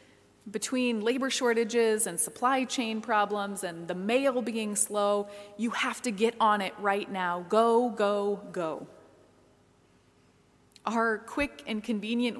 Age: 20-39